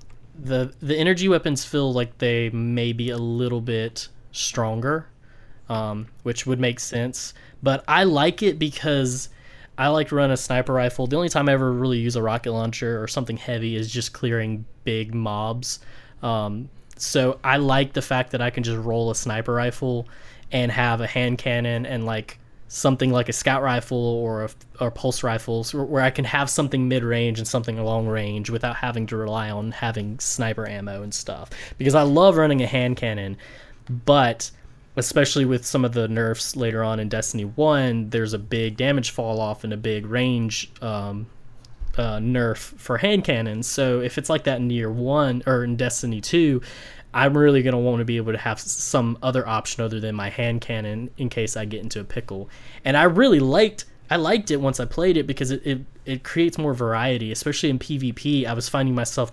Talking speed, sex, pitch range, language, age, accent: 195 wpm, male, 115-135 Hz, English, 10-29, American